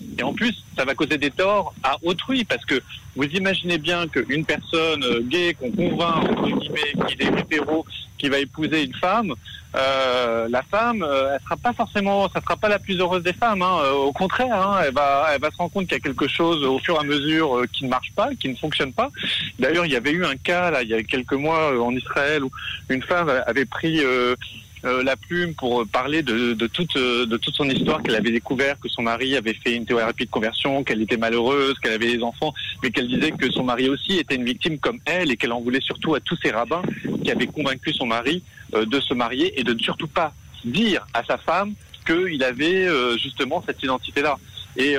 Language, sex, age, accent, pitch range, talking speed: French, male, 30-49, French, 125-175 Hz, 235 wpm